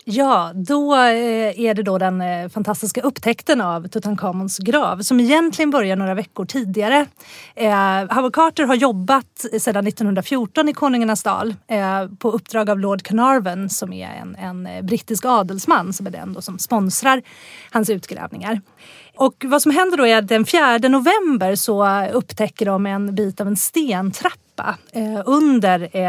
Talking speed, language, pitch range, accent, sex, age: 145 wpm, Swedish, 190-235 Hz, native, female, 30-49